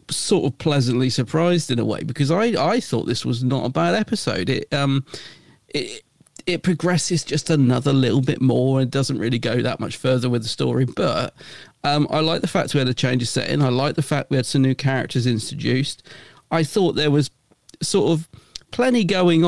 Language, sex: English, male